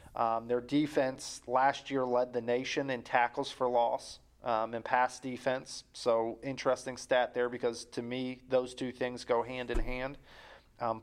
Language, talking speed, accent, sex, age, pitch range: English, 170 wpm, American, male, 40-59, 120-135 Hz